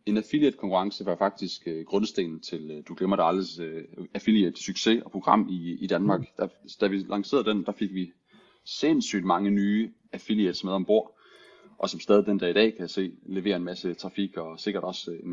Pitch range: 85-105 Hz